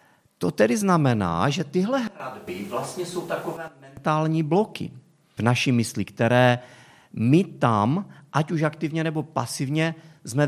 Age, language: 40-59, Czech